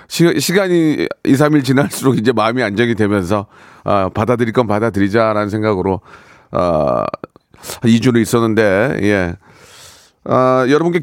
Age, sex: 40-59, male